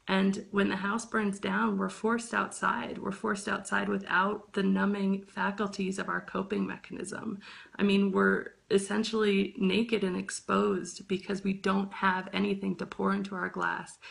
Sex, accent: female, American